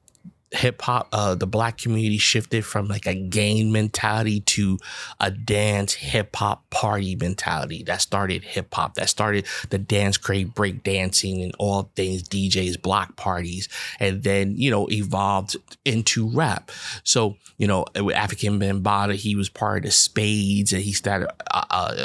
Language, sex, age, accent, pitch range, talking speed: English, male, 30-49, American, 95-115 Hz, 160 wpm